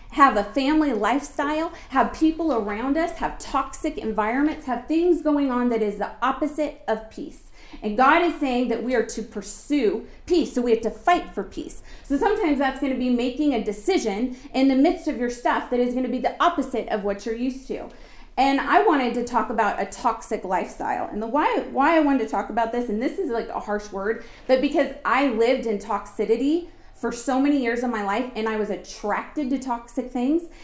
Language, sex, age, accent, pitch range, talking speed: English, female, 30-49, American, 225-290 Hz, 215 wpm